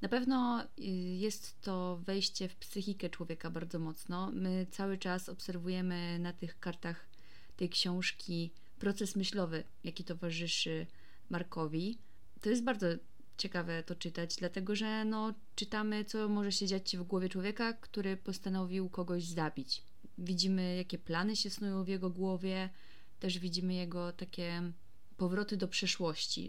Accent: native